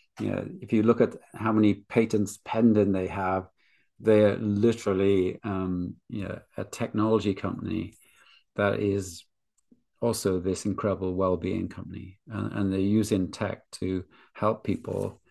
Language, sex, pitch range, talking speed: English, male, 100-120 Hz, 135 wpm